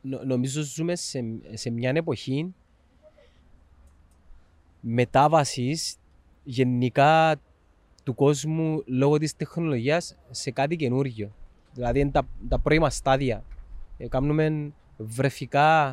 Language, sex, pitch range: Greek, male, 125-165 Hz